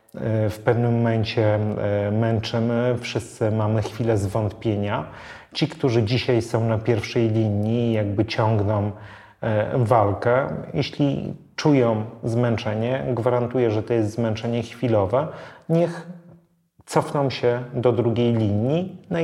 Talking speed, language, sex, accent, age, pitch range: 105 wpm, Polish, male, native, 30-49, 105-125 Hz